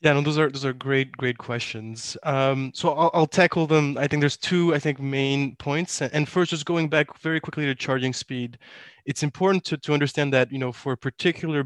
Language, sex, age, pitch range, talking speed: English, male, 20-39, 125-145 Hz, 225 wpm